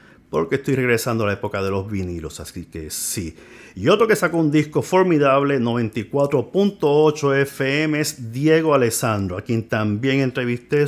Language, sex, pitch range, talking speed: Spanish, male, 110-145 Hz, 155 wpm